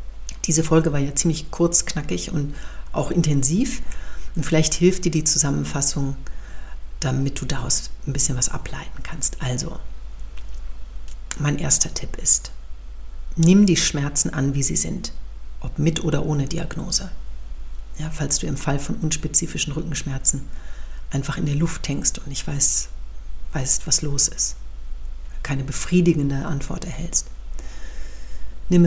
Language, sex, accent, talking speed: German, female, German, 135 wpm